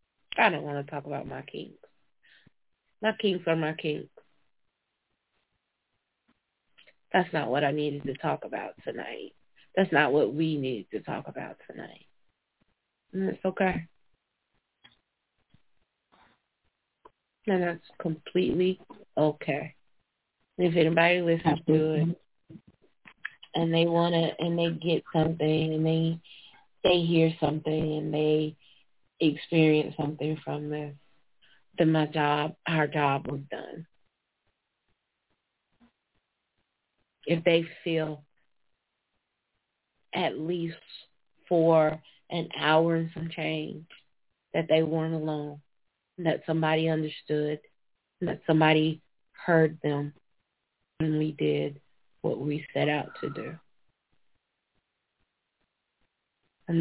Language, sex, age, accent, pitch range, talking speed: English, female, 30-49, American, 150-165 Hz, 105 wpm